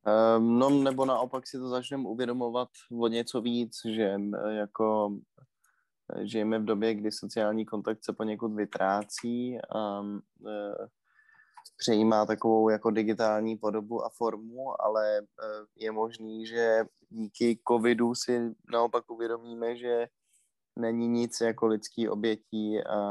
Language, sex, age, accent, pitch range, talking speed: Czech, male, 20-39, native, 105-120 Hz, 115 wpm